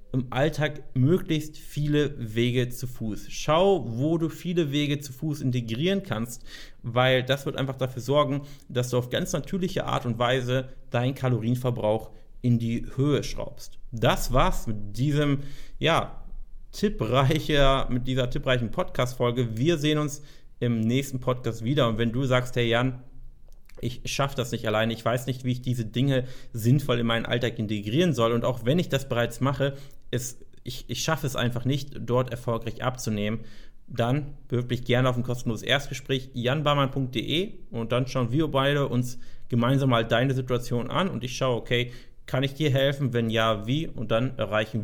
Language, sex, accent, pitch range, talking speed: German, male, German, 120-140 Hz, 170 wpm